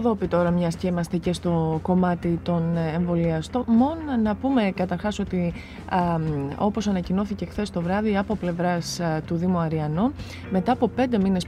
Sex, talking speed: female, 165 wpm